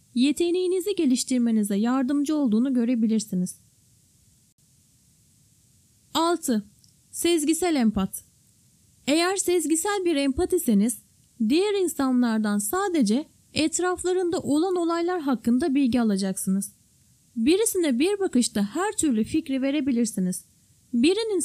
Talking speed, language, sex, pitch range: 80 wpm, Turkish, female, 225-330 Hz